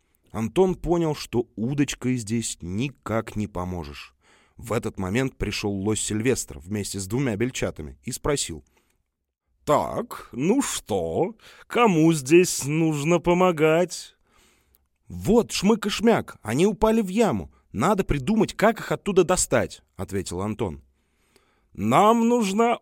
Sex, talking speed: male, 120 wpm